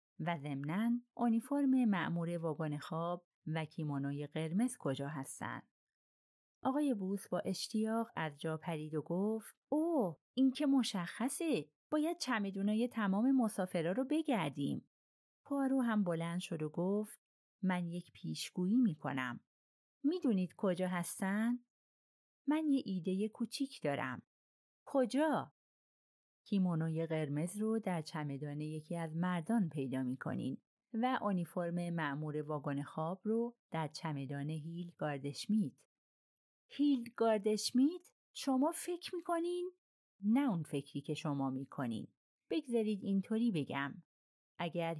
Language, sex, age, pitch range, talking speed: Persian, female, 30-49, 155-235 Hz, 115 wpm